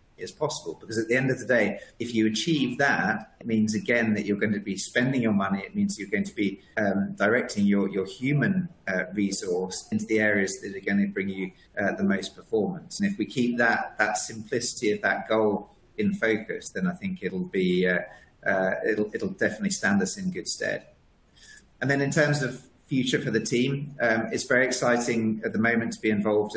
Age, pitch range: 30-49, 105-130 Hz